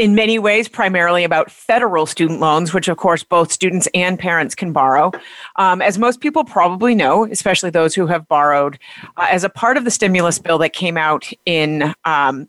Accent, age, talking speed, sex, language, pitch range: American, 40-59, 195 wpm, female, English, 160-200 Hz